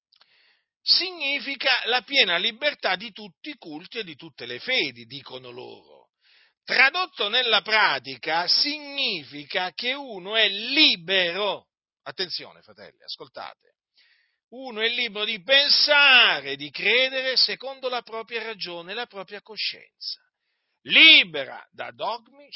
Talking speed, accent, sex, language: 115 wpm, native, male, Italian